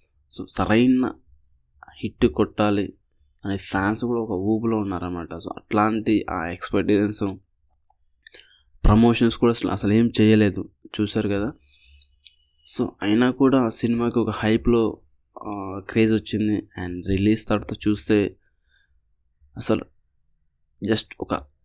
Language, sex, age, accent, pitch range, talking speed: Telugu, male, 20-39, native, 90-110 Hz, 105 wpm